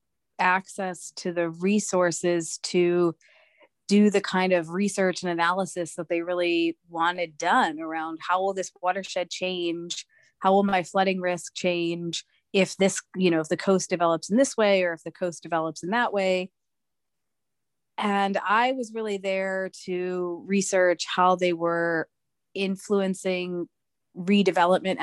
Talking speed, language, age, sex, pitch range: 145 wpm, English, 30-49, female, 170-195 Hz